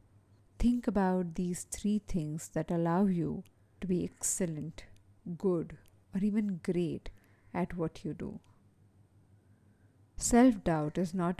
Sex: female